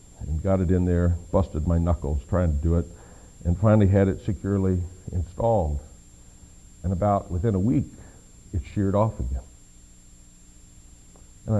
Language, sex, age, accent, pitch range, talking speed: English, male, 60-79, American, 85-120 Hz, 145 wpm